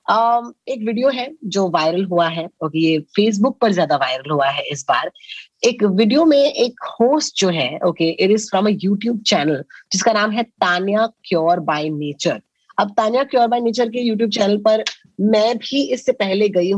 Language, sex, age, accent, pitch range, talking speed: Hindi, female, 20-39, native, 180-240 Hz, 155 wpm